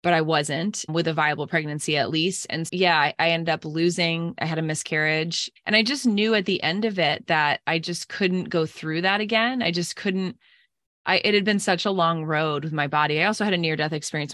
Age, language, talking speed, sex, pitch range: 20-39, English, 240 wpm, female, 160-190 Hz